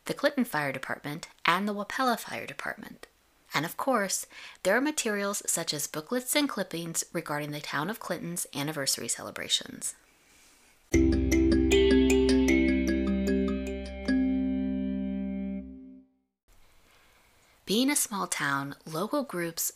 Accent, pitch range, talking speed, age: American, 140-205 Hz, 100 wpm, 30-49